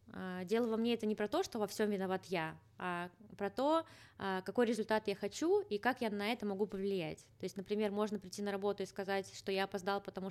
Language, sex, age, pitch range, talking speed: Russian, female, 20-39, 185-220 Hz, 225 wpm